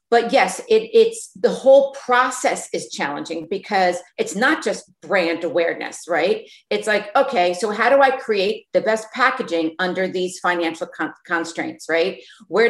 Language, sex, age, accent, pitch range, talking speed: English, female, 40-59, American, 180-235 Hz, 160 wpm